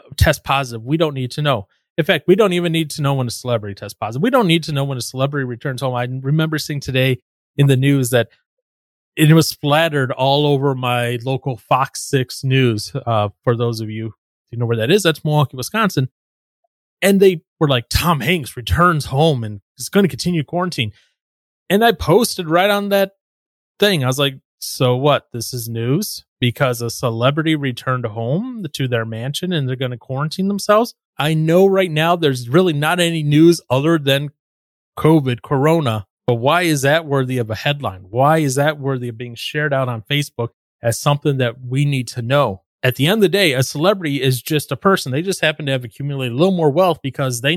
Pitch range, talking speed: 125-165 Hz, 210 wpm